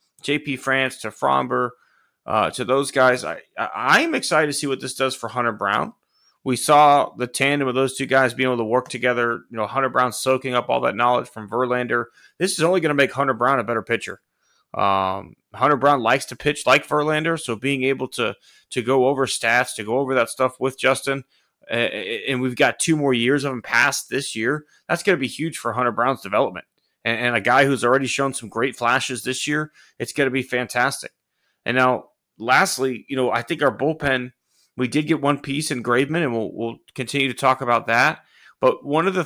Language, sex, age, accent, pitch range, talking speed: English, male, 30-49, American, 120-140 Hz, 215 wpm